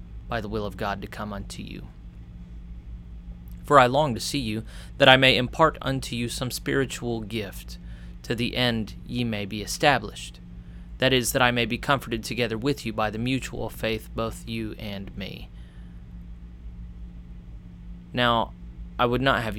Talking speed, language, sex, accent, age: 165 wpm, English, male, American, 30-49